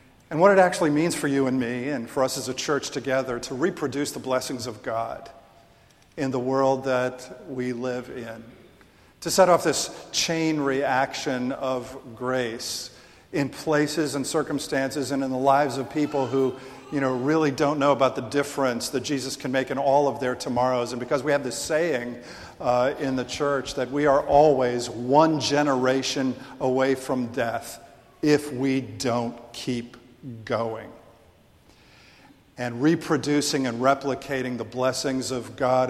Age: 50-69